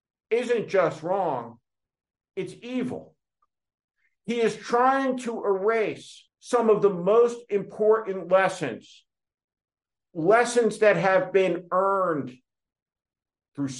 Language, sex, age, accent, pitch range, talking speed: English, male, 50-69, American, 145-210 Hz, 95 wpm